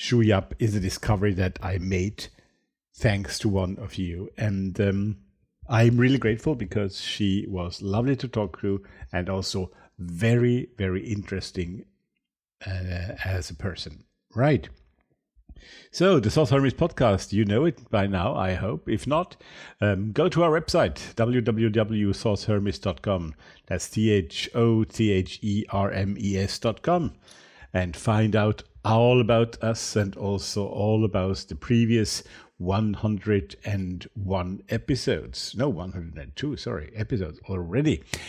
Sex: male